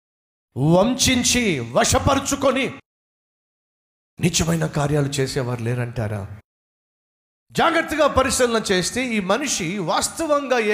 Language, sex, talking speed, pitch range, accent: Telugu, male, 55 wpm, 125-205 Hz, native